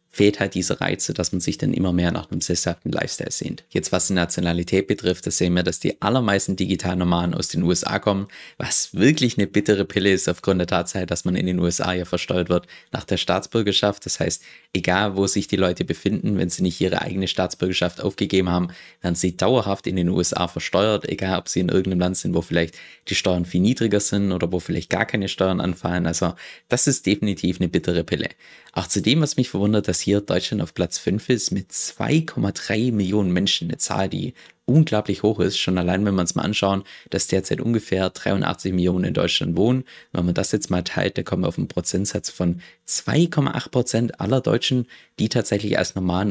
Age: 20-39